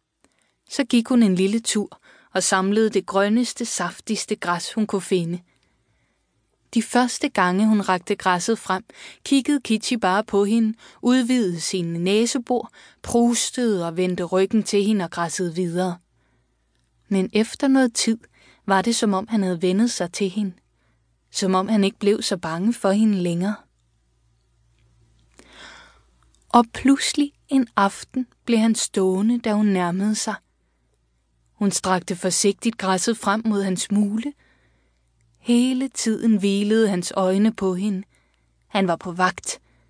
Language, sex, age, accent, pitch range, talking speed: Danish, female, 20-39, native, 180-225 Hz, 140 wpm